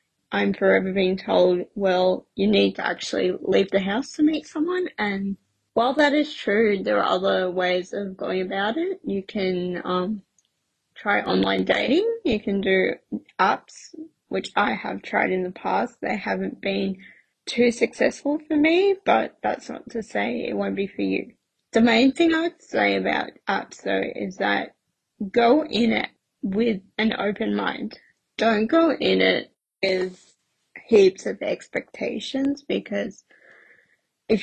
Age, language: 20-39, English